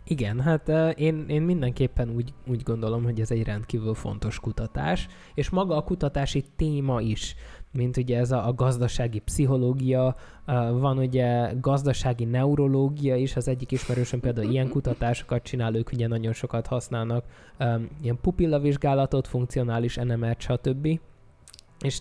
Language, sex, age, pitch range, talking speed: Hungarian, male, 20-39, 120-140 Hz, 135 wpm